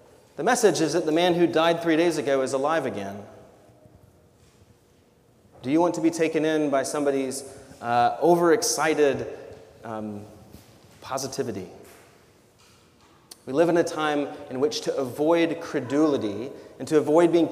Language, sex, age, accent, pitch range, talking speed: English, male, 30-49, American, 110-155 Hz, 140 wpm